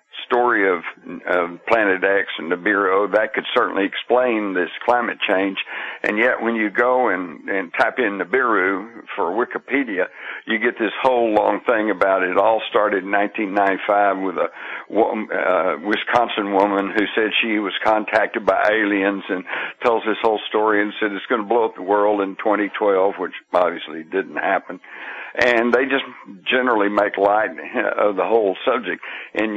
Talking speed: 165 wpm